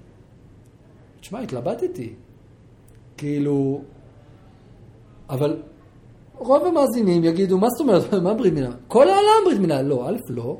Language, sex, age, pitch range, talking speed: Hebrew, male, 40-59, 130-190 Hz, 125 wpm